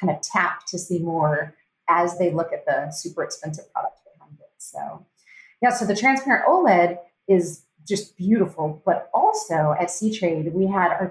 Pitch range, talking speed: 170-220 Hz, 180 wpm